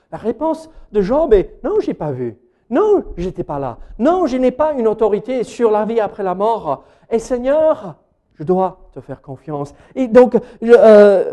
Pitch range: 175-250 Hz